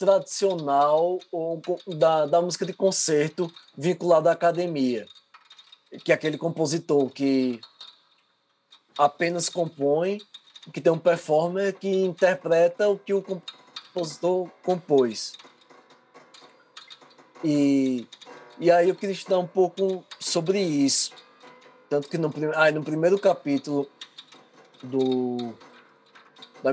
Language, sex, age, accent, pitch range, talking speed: English, male, 20-39, Brazilian, 145-180 Hz, 100 wpm